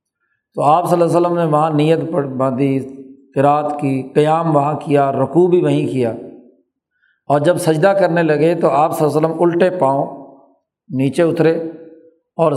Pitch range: 140-170 Hz